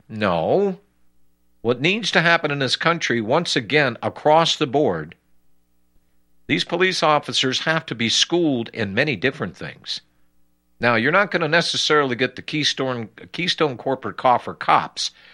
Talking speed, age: 145 wpm, 50-69